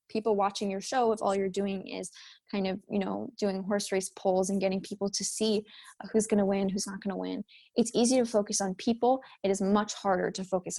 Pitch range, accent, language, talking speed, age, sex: 195-220 Hz, American, English, 240 wpm, 20-39, female